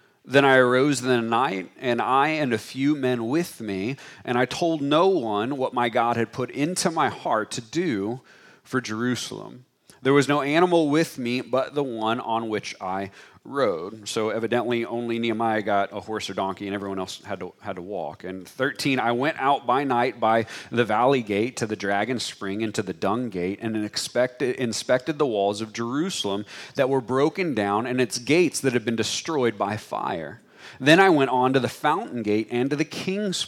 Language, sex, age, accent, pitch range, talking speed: English, male, 40-59, American, 110-145 Hz, 205 wpm